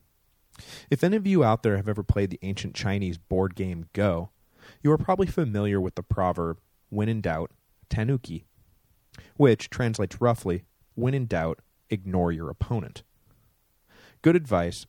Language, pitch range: English, 95-120 Hz